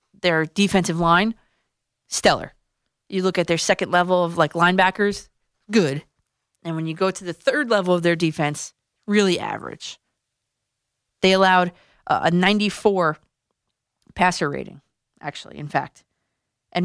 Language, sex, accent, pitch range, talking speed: English, female, American, 160-200 Hz, 135 wpm